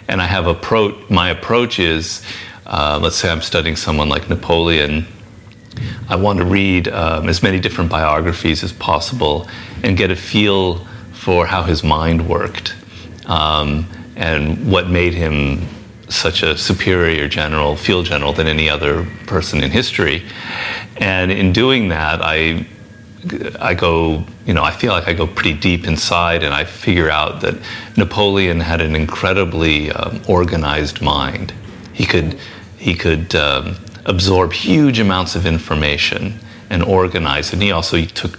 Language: English